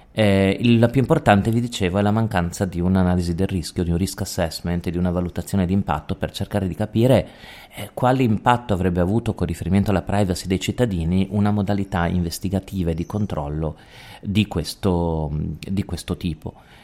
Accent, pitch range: native, 90-105 Hz